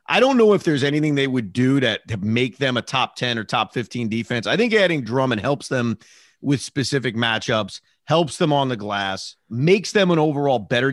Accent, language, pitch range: American, English, 125-175 Hz